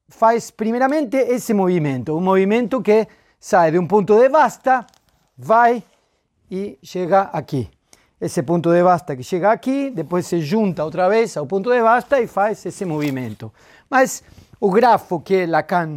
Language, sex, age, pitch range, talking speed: Portuguese, male, 40-59, 165-235 Hz, 165 wpm